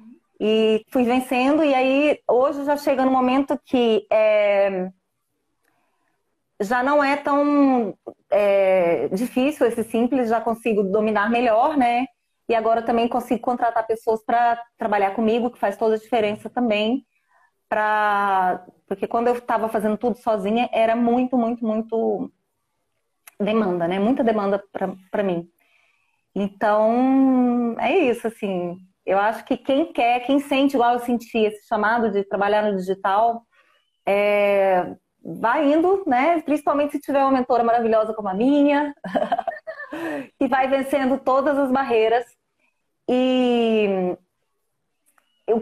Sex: female